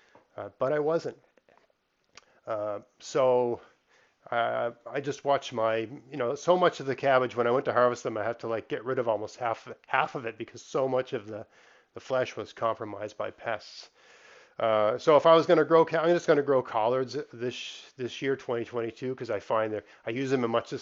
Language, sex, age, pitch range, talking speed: English, male, 40-59, 110-140 Hz, 220 wpm